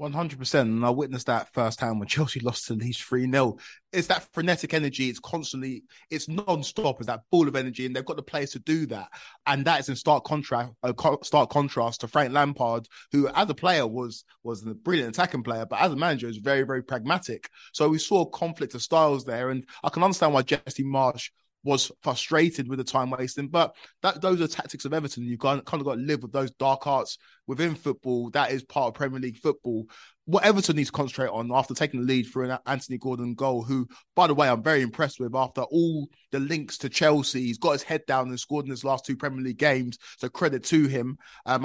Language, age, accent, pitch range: English, 20-39, British, 125-150 Hz